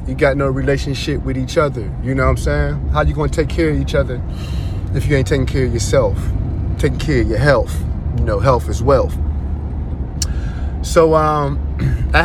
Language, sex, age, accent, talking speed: English, male, 30-49, American, 195 wpm